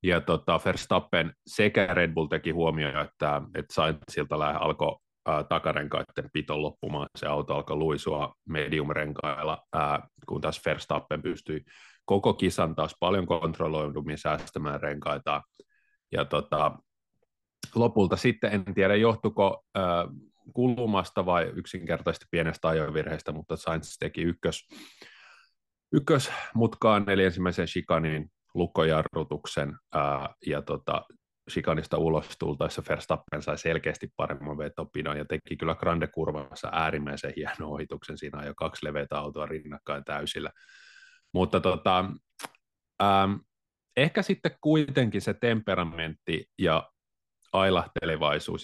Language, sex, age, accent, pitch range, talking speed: Finnish, male, 30-49, native, 75-100 Hz, 110 wpm